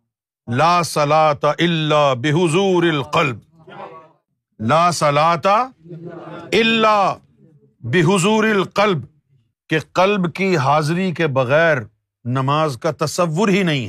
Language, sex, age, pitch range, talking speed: Urdu, male, 50-69, 135-205 Hz, 95 wpm